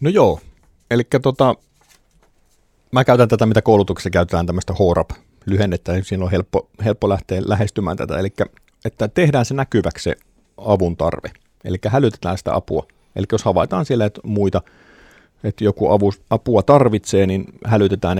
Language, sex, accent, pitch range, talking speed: Finnish, male, native, 85-110 Hz, 150 wpm